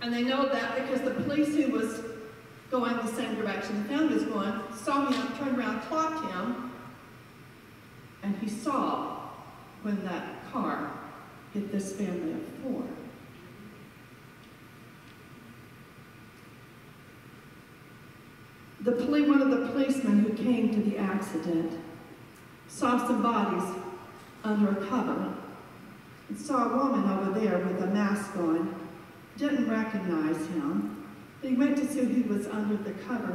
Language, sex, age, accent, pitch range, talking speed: English, female, 50-69, American, 180-250 Hz, 130 wpm